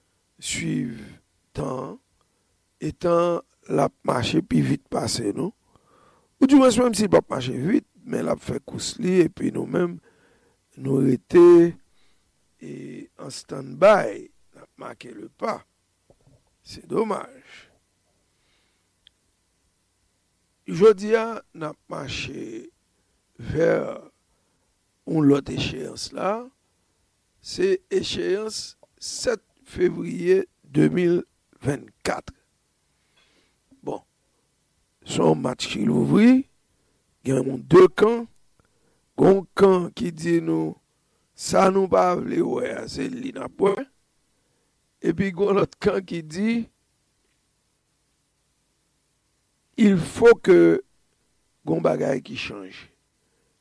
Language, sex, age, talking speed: English, male, 60-79, 95 wpm